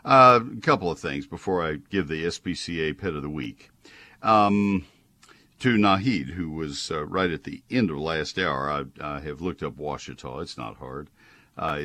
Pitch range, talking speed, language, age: 70-95 Hz, 185 wpm, English, 60-79